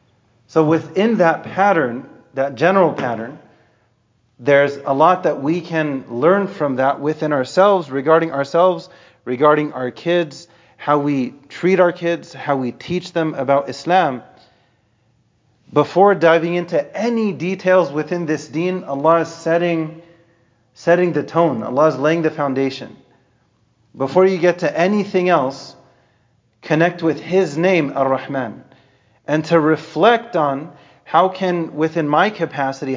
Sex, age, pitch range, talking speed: male, 30-49, 140-175 Hz, 135 wpm